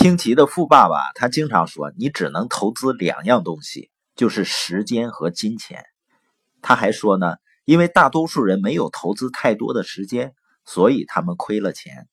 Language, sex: Chinese, male